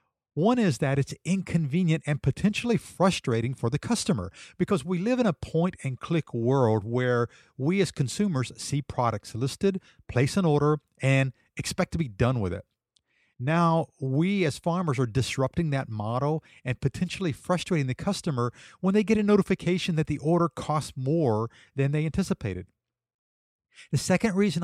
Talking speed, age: 155 wpm, 50-69